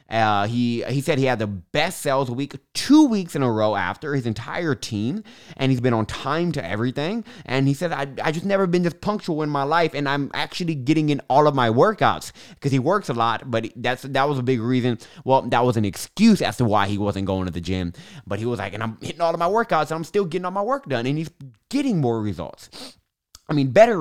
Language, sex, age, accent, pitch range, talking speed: English, male, 20-39, American, 105-145 Hz, 255 wpm